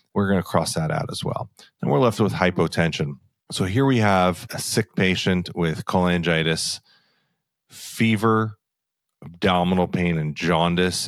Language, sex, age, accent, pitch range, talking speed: English, male, 30-49, American, 80-95 Hz, 145 wpm